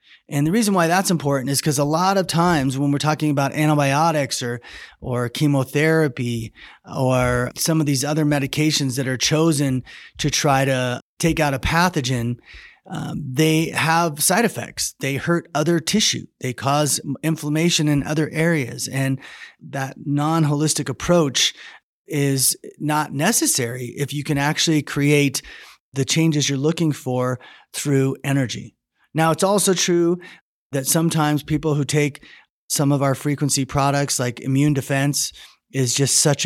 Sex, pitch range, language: male, 130-155 Hz, English